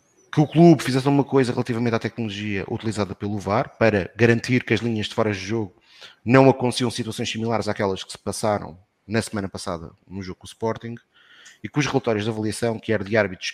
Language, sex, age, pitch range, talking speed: Portuguese, male, 30-49, 95-115 Hz, 210 wpm